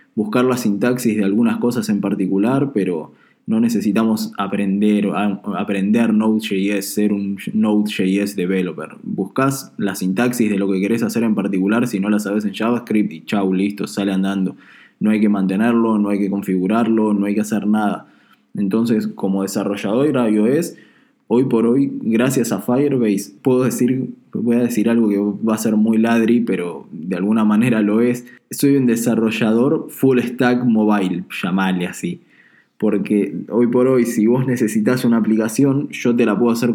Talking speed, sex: 170 wpm, male